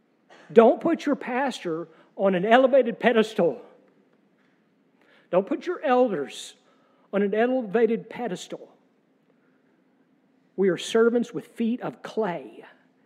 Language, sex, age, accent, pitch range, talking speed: English, male, 50-69, American, 195-260 Hz, 105 wpm